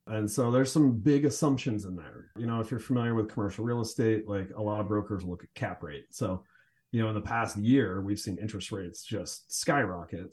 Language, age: English, 30-49